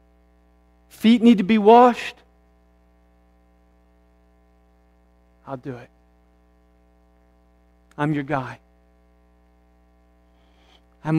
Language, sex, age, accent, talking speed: English, male, 50-69, American, 65 wpm